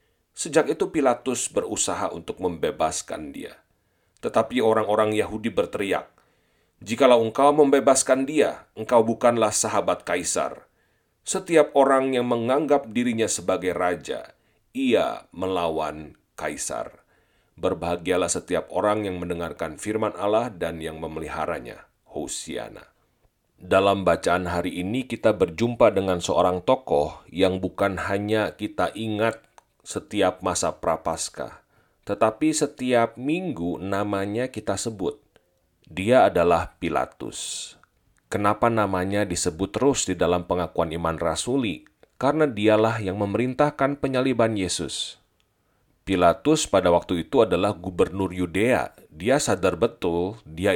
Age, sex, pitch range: 40-59, male, 95-125 Hz